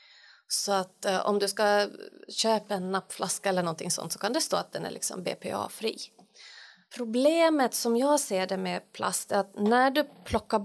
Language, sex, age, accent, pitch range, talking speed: Swedish, female, 30-49, native, 195-255 Hz, 185 wpm